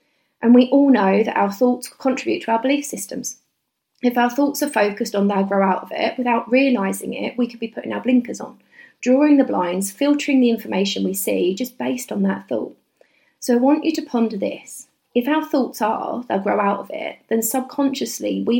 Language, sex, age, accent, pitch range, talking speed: English, female, 30-49, British, 195-260 Hz, 210 wpm